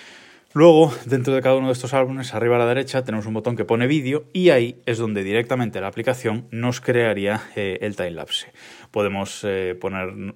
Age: 20-39